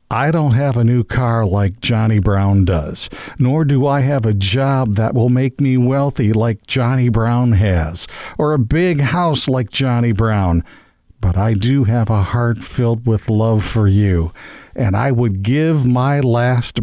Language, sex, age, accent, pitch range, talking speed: English, male, 50-69, American, 95-130 Hz, 175 wpm